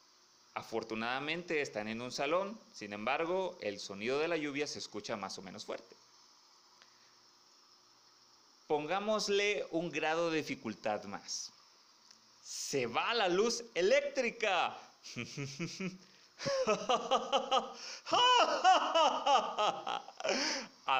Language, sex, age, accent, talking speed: Spanish, male, 30-49, Mexican, 85 wpm